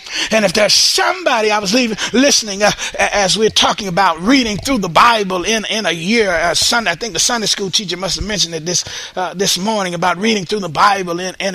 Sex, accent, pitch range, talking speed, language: male, American, 195-270 Hz, 230 wpm, English